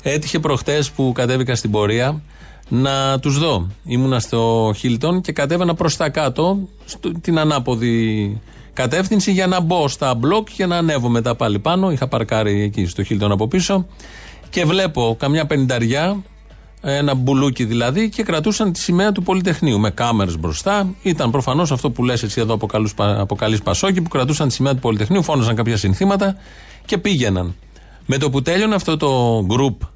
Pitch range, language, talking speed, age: 115-170 Hz, Greek, 160 wpm, 30-49